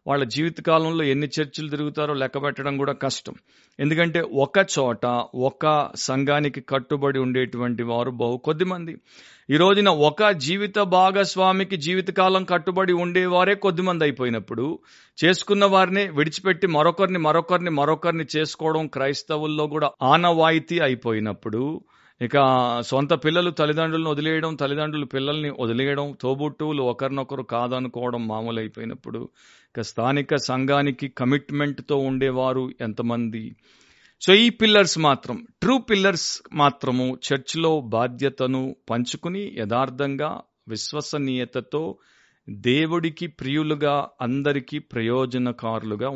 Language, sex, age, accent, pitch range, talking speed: Telugu, male, 50-69, native, 130-165 Hz, 100 wpm